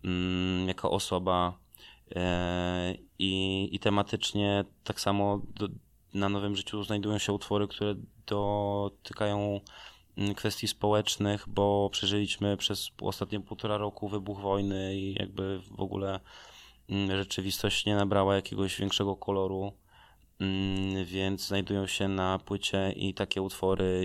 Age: 20-39